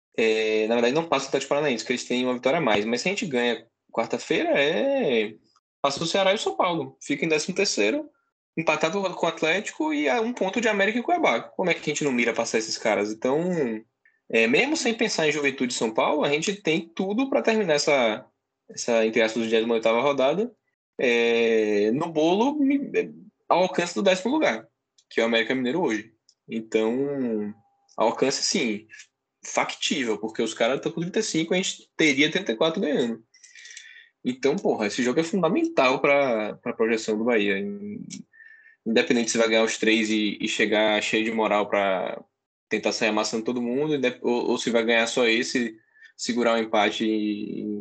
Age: 10-29